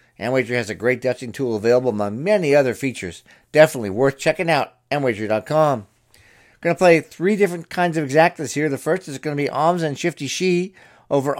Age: 50-69